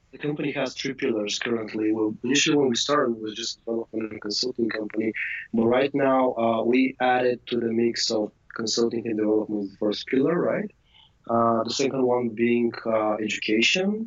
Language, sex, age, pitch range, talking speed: English, male, 30-49, 110-130 Hz, 170 wpm